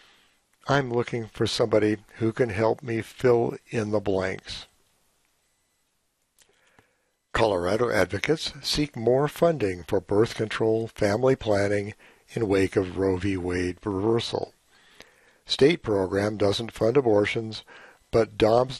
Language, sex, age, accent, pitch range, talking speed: English, male, 60-79, American, 95-120 Hz, 115 wpm